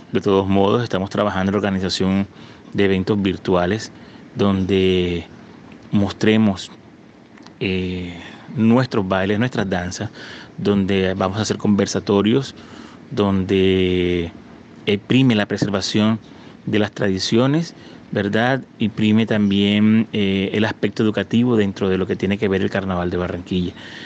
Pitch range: 95-110 Hz